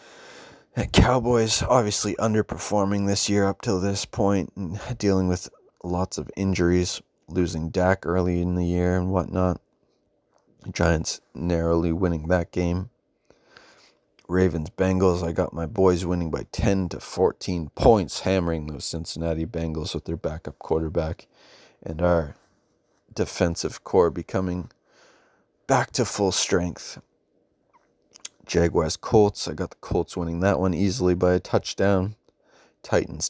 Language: English